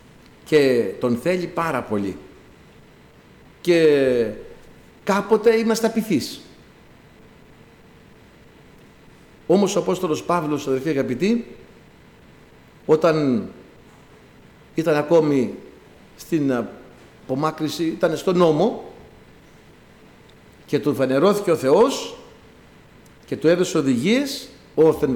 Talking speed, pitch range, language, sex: 80 wpm, 130-195 Hz, Greek, male